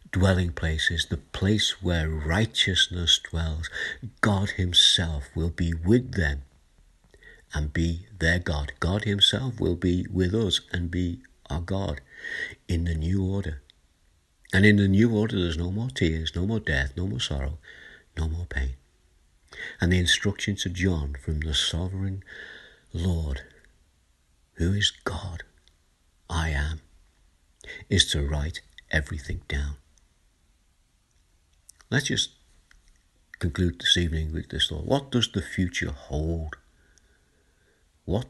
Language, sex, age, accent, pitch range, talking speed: English, male, 60-79, British, 75-90 Hz, 130 wpm